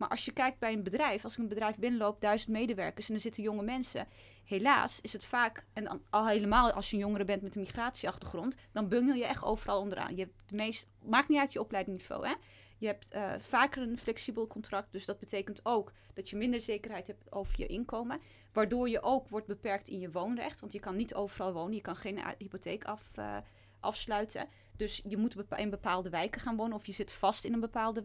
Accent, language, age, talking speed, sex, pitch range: Dutch, Dutch, 20-39, 225 wpm, female, 200-240 Hz